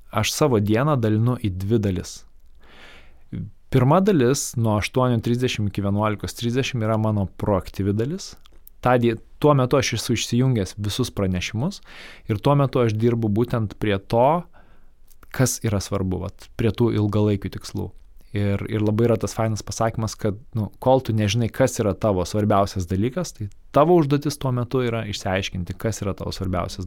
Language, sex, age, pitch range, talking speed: English, male, 20-39, 100-120 Hz, 150 wpm